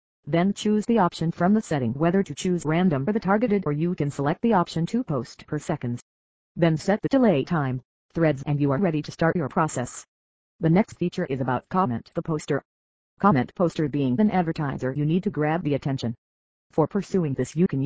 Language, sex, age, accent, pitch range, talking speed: English, female, 40-59, American, 135-180 Hz, 210 wpm